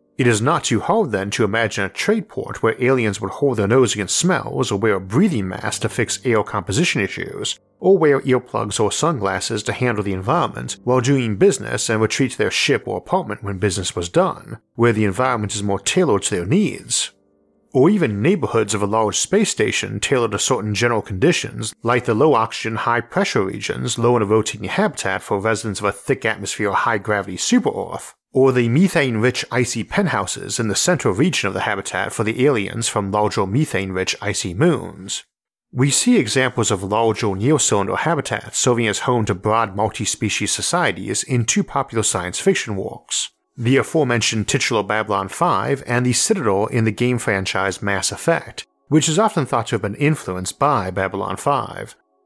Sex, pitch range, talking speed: male, 100-130 Hz, 185 wpm